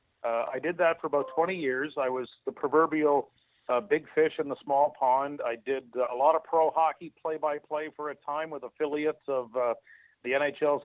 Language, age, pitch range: English, 50-69, 125-155 Hz